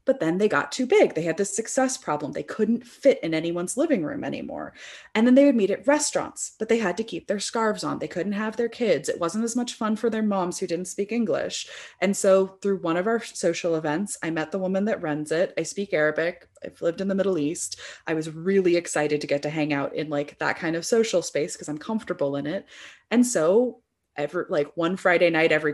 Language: English